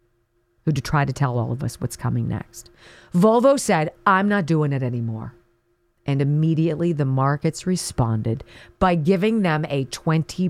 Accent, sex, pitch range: American, female, 115-190 Hz